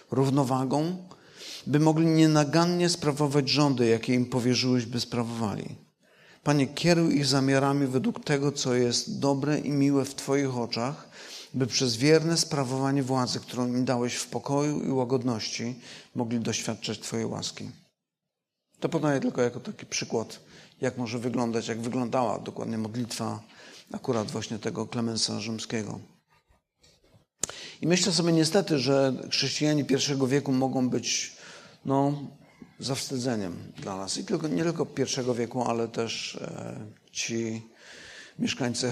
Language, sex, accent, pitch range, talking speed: Polish, male, native, 120-140 Hz, 130 wpm